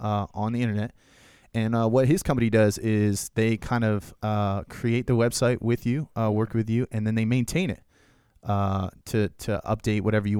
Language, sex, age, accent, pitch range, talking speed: English, male, 20-39, American, 105-125 Hz, 200 wpm